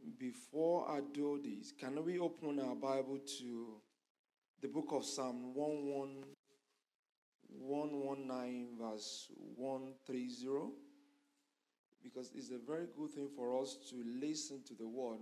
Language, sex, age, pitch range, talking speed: English, male, 50-69, 135-195 Hz, 120 wpm